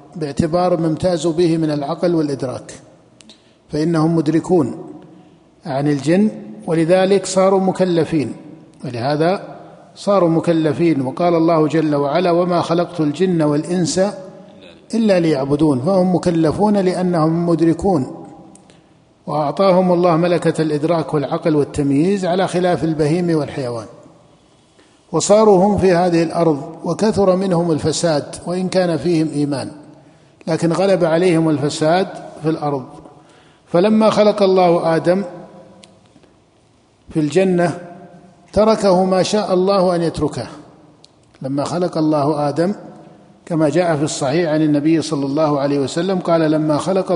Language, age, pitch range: Arabic, 50-69, 155-180 Hz